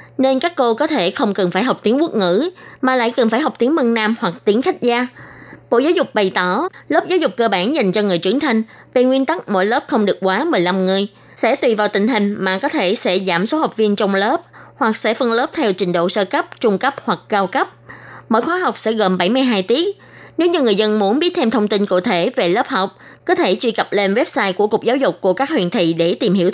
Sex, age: female, 20-39